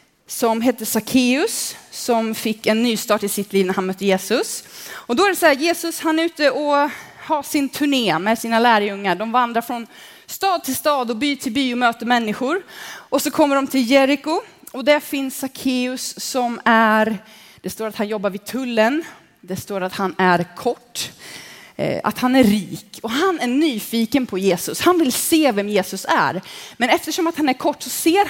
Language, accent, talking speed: Swedish, native, 200 wpm